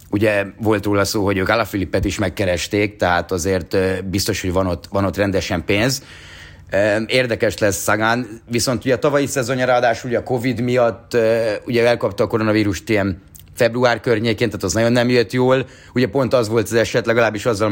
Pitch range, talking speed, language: 100-125 Hz, 175 wpm, Hungarian